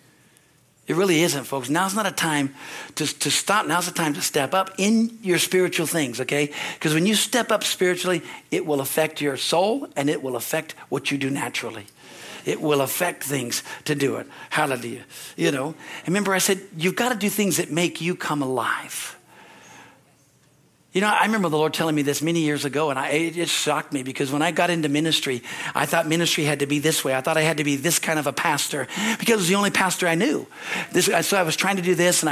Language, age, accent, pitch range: English, 50-69, American, 150-200 Hz